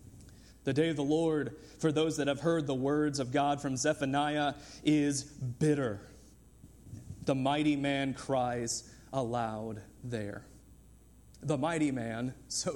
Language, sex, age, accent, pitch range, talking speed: English, male, 30-49, American, 125-155 Hz, 130 wpm